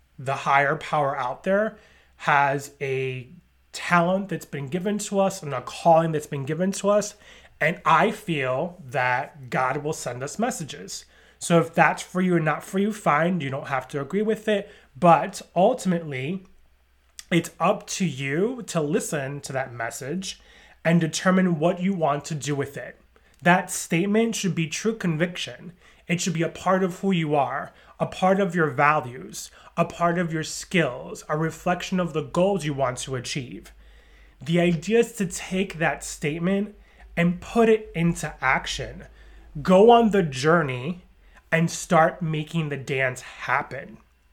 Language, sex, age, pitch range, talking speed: English, male, 30-49, 140-185 Hz, 165 wpm